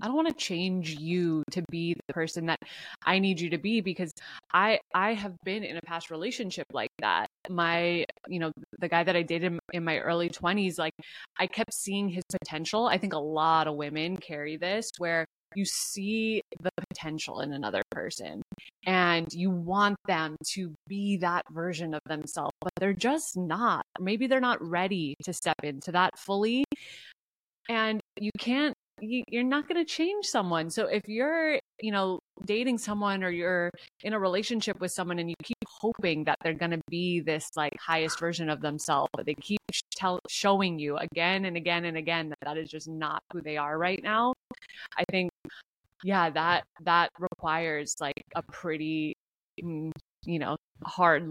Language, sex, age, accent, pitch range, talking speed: English, female, 20-39, American, 160-200 Hz, 180 wpm